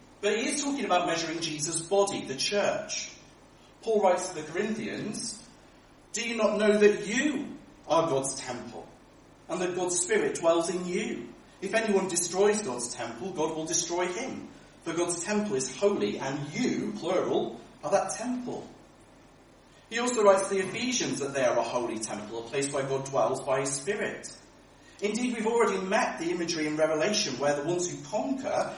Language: English